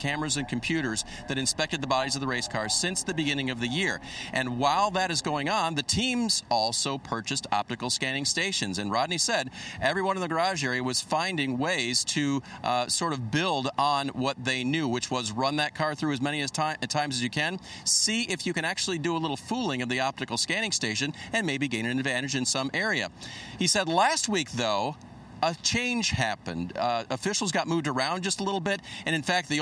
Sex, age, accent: male, 50-69, American